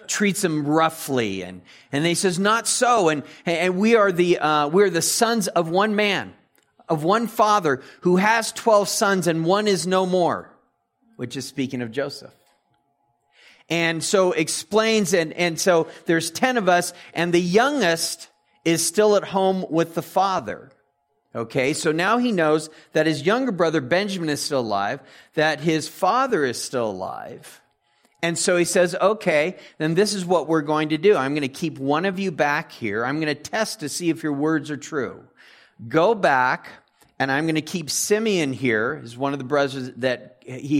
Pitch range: 140-185 Hz